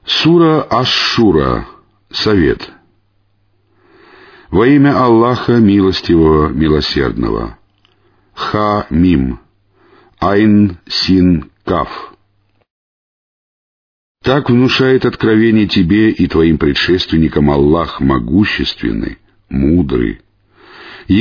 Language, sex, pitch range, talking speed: Russian, male, 80-110 Hz, 55 wpm